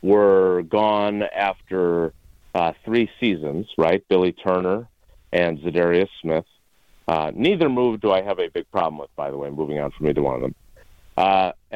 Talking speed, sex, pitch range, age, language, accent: 170 wpm, male, 90-155 Hz, 50-69, English, American